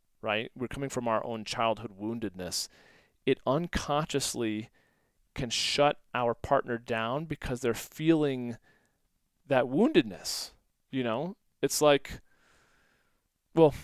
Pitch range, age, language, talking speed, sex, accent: 115-140 Hz, 30-49, English, 110 wpm, male, American